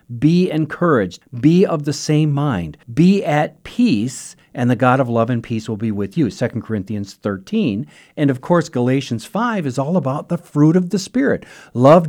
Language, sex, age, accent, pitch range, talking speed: English, male, 50-69, American, 115-165 Hz, 190 wpm